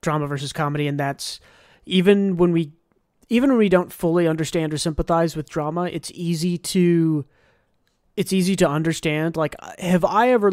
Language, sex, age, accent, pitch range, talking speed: English, male, 30-49, American, 150-180 Hz, 165 wpm